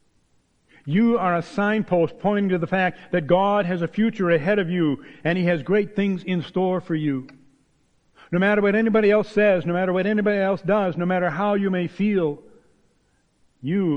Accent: American